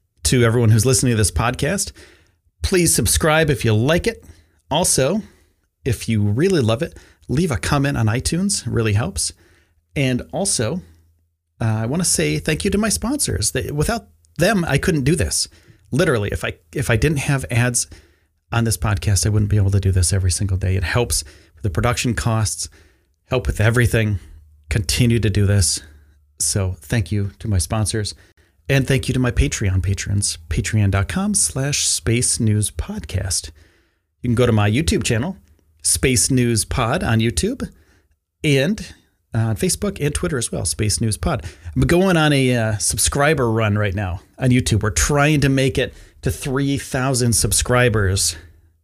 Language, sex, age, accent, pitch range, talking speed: English, male, 30-49, American, 85-130 Hz, 165 wpm